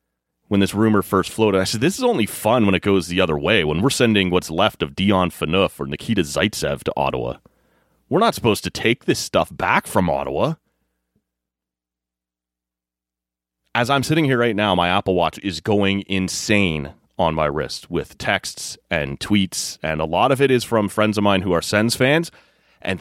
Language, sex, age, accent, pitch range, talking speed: English, male, 30-49, American, 75-115 Hz, 195 wpm